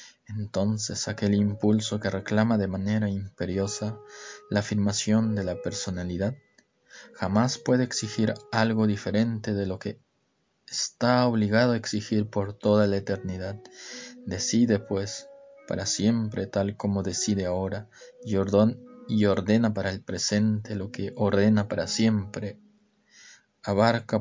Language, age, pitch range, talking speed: Spanish, 20-39, 100-120 Hz, 120 wpm